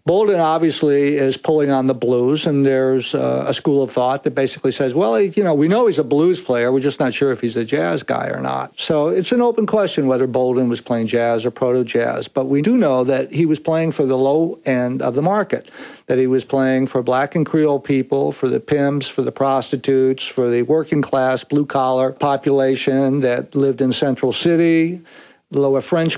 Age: 60-79